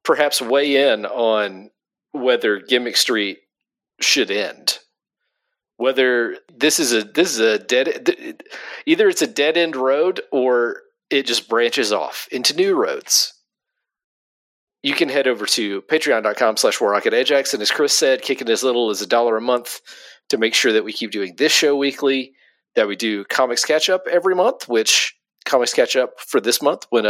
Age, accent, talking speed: 40-59, American, 175 wpm